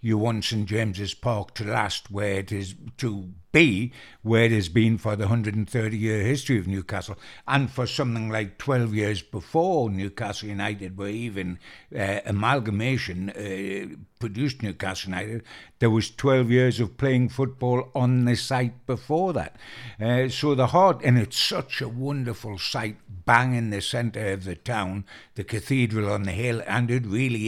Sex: male